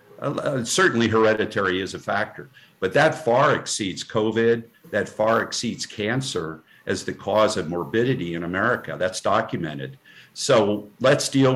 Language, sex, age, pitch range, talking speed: English, male, 50-69, 95-115 Hz, 140 wpm